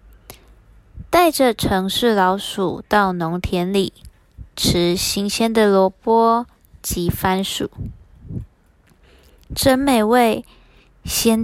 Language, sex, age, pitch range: Chinese, female, 20-39, 170-235 Hz